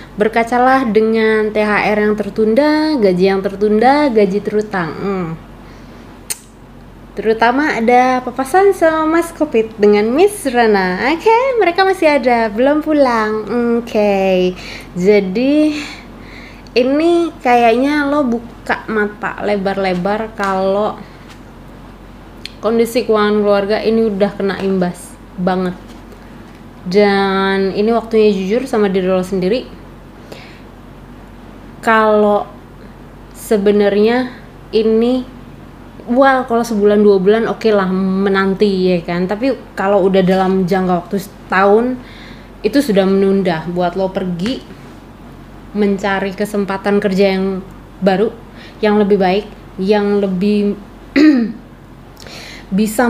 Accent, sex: Indonesian, female